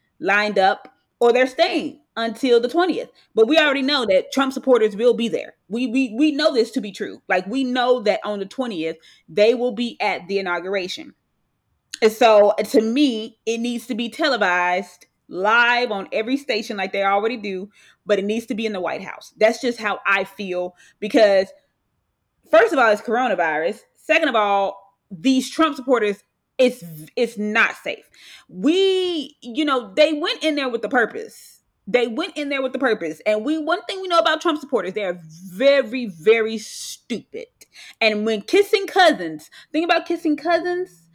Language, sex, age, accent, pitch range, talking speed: English, female, 20-39, American, 210-280 Hz, 180 wpm